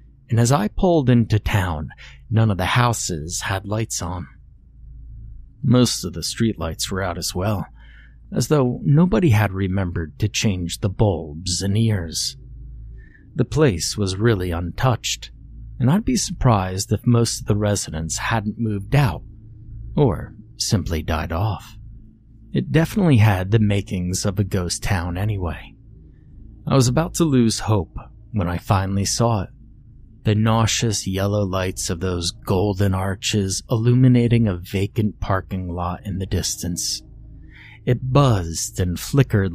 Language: English